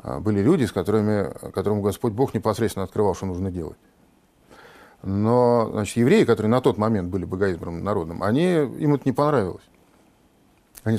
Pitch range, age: 105-135 Hz, 50-69